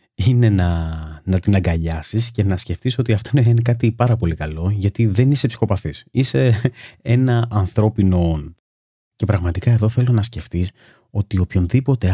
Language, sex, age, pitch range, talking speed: Greek, male, 30-49, 90-120 Hz, 150 wpm